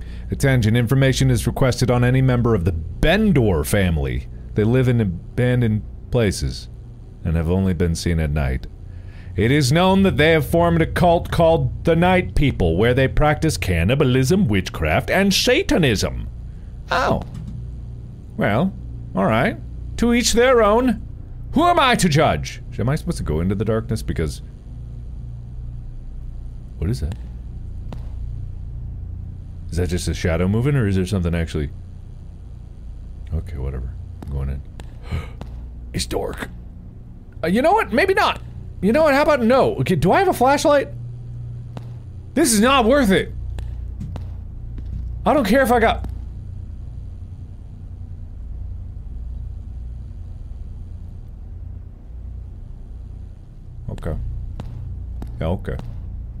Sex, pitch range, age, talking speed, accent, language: male, 85-125 Hz, 40-59, 120 wpm, American, English